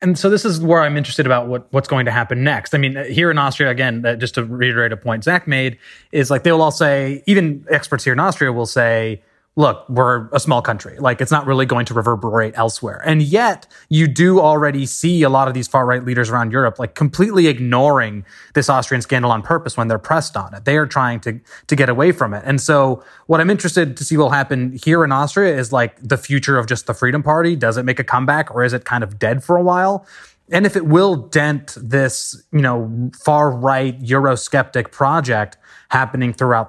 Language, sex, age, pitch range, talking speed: English, male, 20-39, 125-160 Hz, 220 wpm